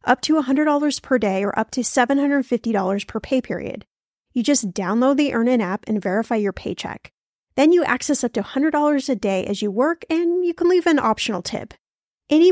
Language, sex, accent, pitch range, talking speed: English, female, American, 225-295 Hz, 195 wpm